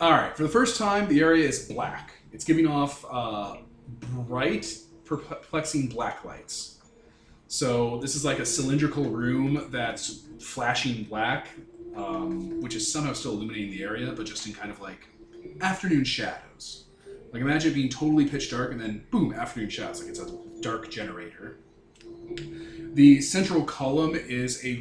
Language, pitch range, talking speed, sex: English, 110-155 Hz, 155 wpm, male